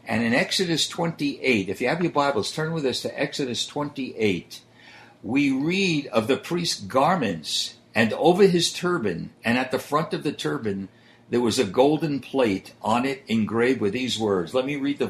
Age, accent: 60-79, American